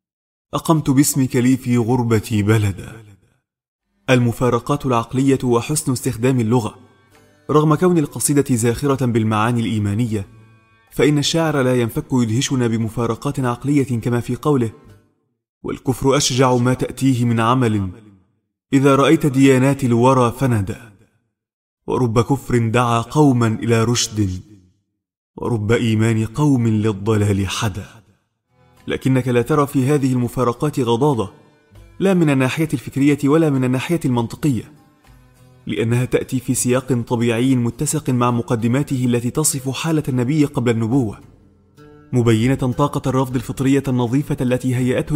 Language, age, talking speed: Arabic, 30-49, 115 wpm